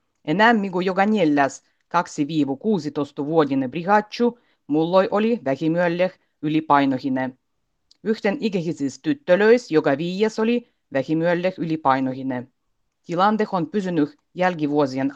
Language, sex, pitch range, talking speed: Finnish, female, 140-180 Hz, 95 wpm